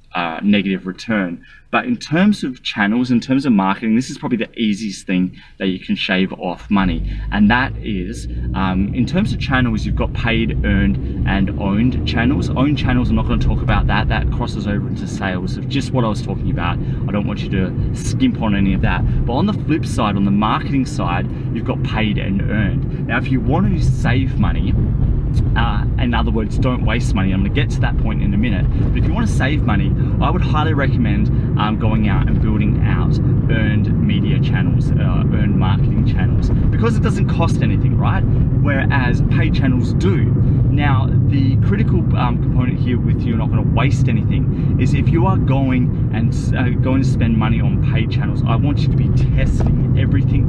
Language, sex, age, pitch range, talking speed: English, male, 20-39, 110-130 Hz, 210 wpm